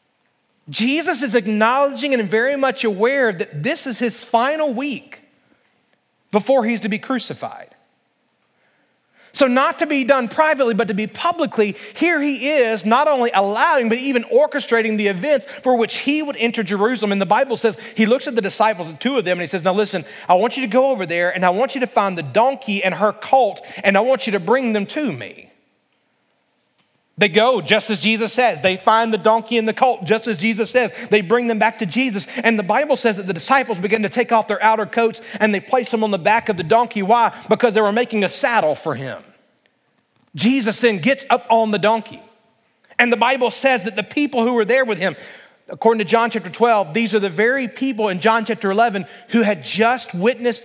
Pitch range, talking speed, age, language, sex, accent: 210-250 Hz, 215 wpm, 30-49, English, male, American